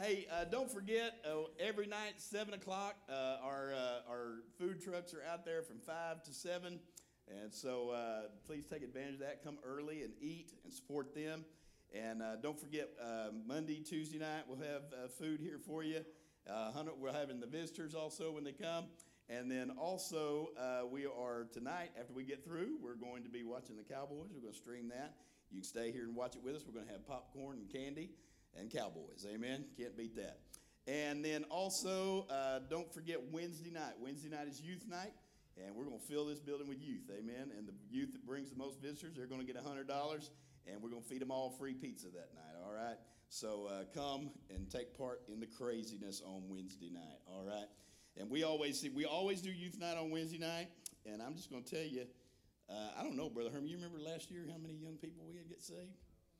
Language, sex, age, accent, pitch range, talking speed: English, male, 50-69, American, 120-160 Hz, 215 wpm